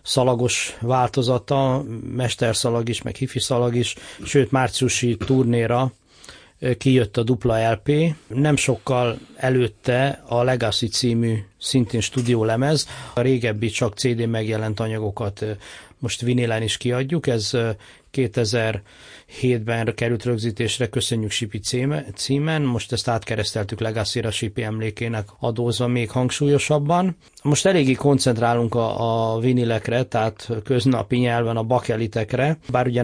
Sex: male